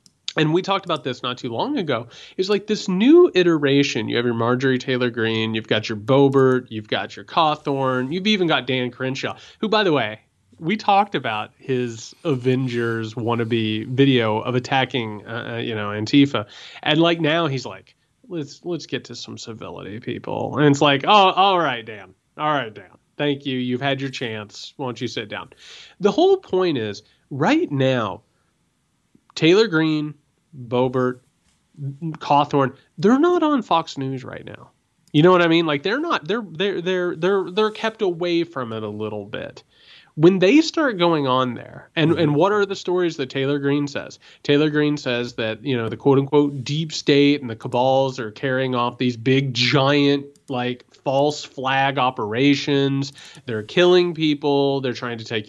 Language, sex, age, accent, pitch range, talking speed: English, male, 30-49, American, 125-165 Hz, 180 wpm